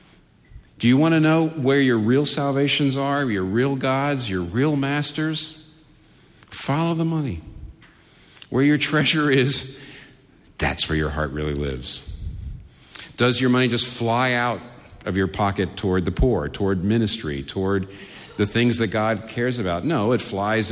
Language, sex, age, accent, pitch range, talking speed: English, male, 50-69, American, 90-130 Hz, 155 wpm